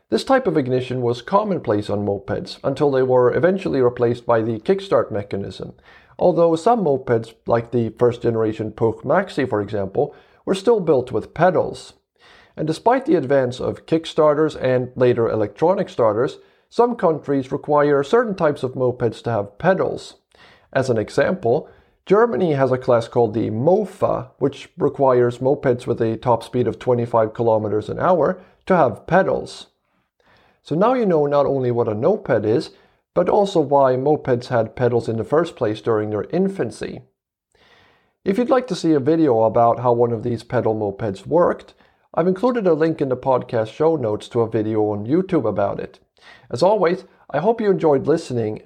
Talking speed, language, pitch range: 170 wpm, English, 115-160 Hz